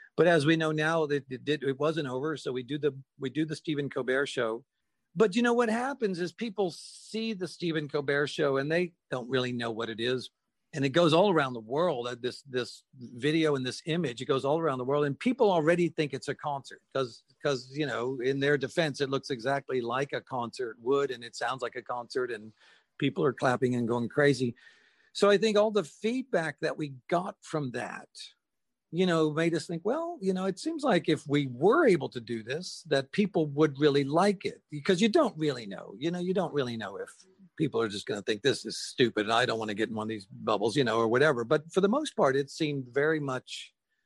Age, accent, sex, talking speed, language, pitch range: 50-69, American, male, 235 wpm, English, 130-180 Hz